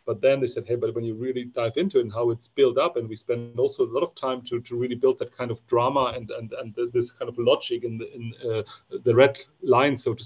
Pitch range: 115-140 Hz